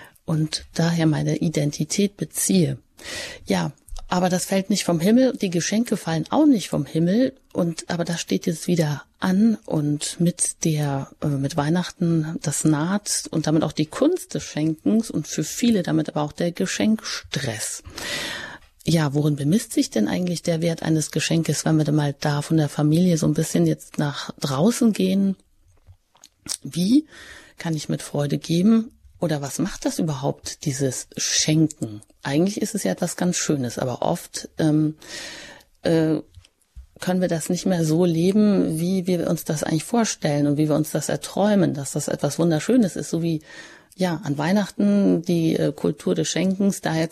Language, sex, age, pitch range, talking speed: German, female, 30-49, 155-200 Hz, 170 wpm